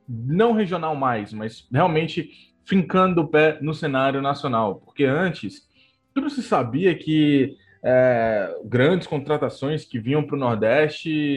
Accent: Brazilian